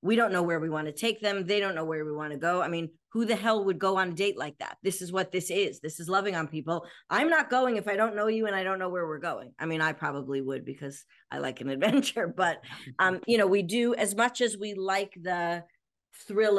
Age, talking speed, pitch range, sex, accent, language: 40-59, 280 wpm, 155-195 Hz, female, American, English